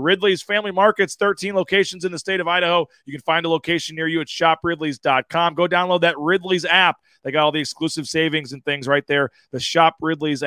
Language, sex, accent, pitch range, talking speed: English, male, American, 155-185 Hz, 210 wpm